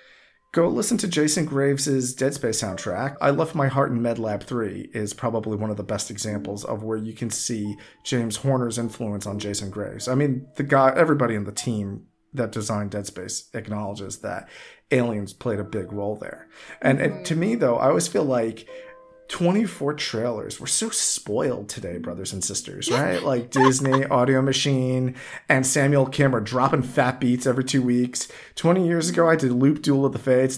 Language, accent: English, American